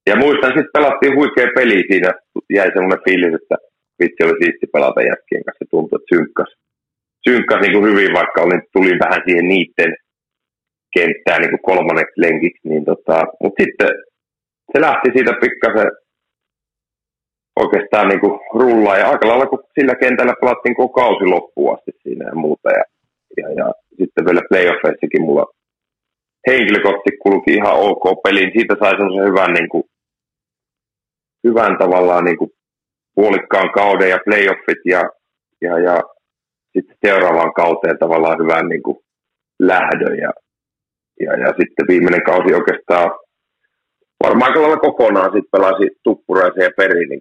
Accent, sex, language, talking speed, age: native, male, Finnish, 130 wpm, 40-59